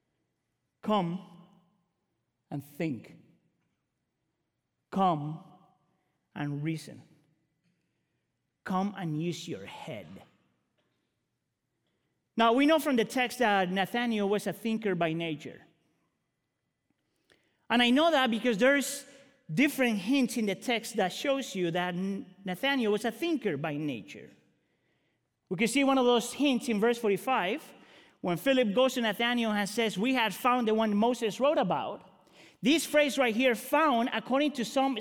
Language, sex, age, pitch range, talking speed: English, male, 40-59, 205-275 Hz, 135 wpm